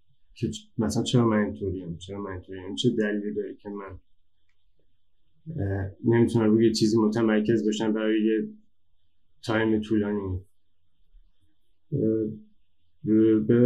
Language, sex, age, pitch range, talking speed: Persian, male, 20-39, 90-125 Hz, 115 wpm